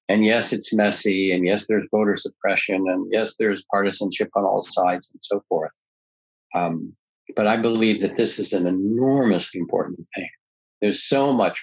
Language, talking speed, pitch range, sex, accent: English, 170 wpm, 95-110 Hz, male, American